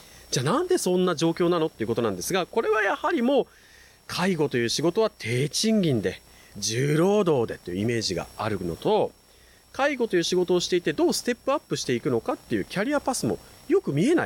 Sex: male